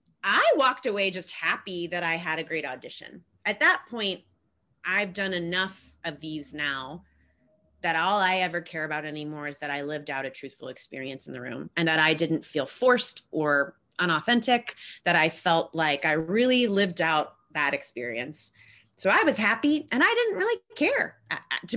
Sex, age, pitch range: female, 30-49, 150-200 Hz